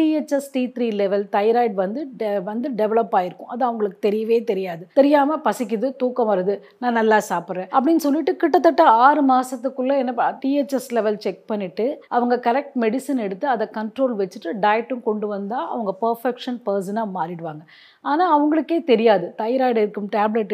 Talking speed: 65 wpm